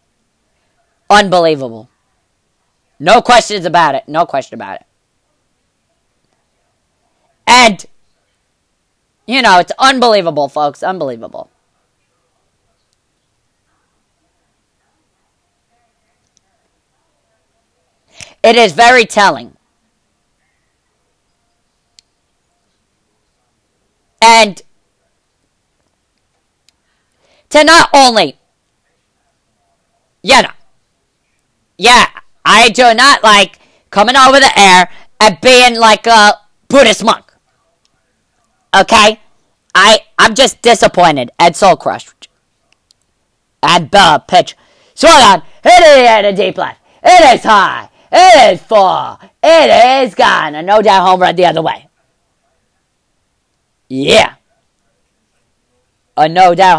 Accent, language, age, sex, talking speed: American, English, 40-59, female, 85 wpm